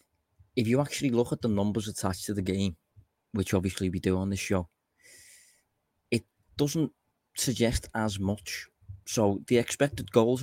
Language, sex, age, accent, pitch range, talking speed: English, male, 20-39, British, 95-110 Hz, 155 wpm